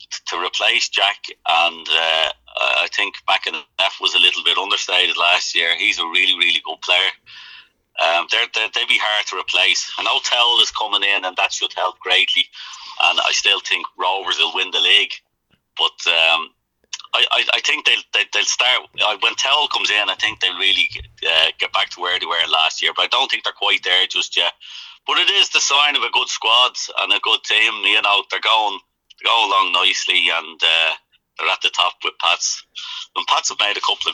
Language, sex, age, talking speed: English, male, 30-49, 215 wpm